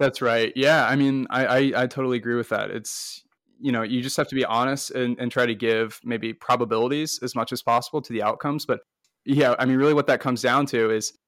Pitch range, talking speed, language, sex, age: 115-135 Hz, 245 wpm, English, male, 20-39